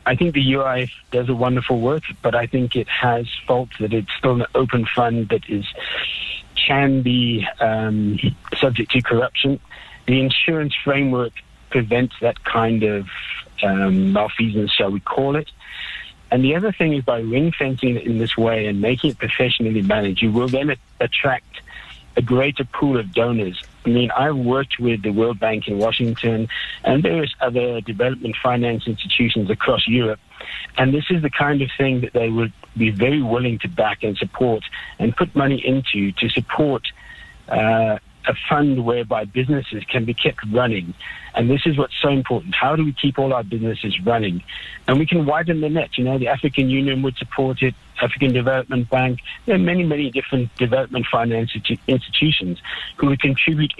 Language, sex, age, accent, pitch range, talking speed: English, male, 50-69, British, 115-135 Hz, 175 wpm